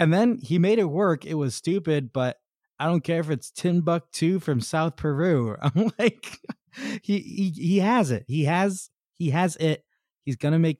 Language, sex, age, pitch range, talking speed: English, male, 20-39, 115-160 Hz, 200 wpm